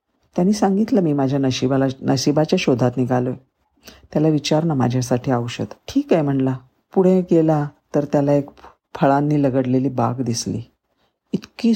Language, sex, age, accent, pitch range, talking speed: Marathi, female, 50-69, native, 130-170 Hz, 135 wpm